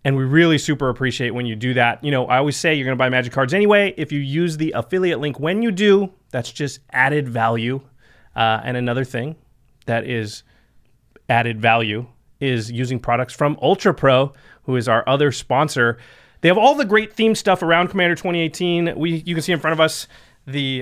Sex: male